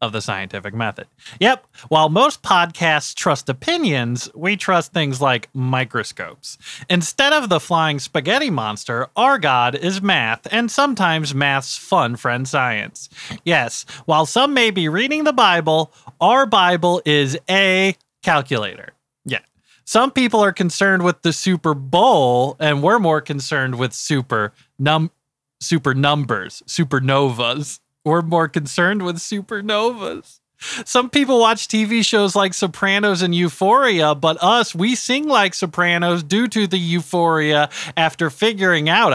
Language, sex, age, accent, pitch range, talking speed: English, male, 30-49, American, 140-195 Hz, 140 wpm